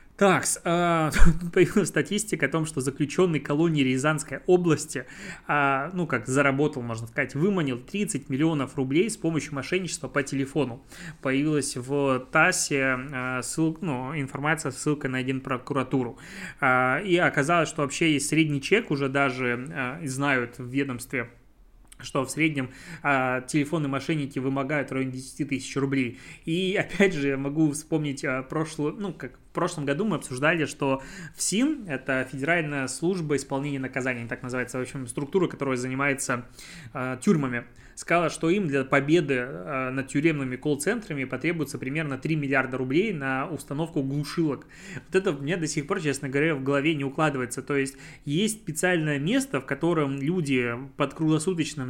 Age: 20-39